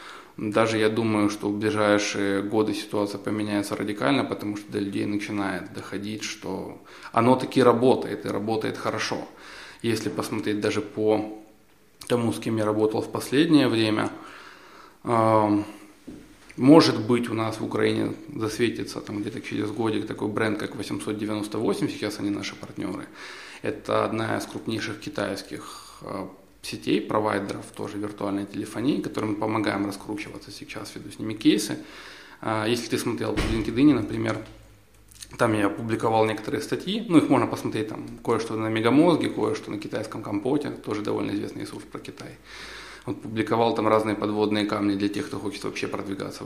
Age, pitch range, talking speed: 20-39, 100-110 Hz, 150 wpm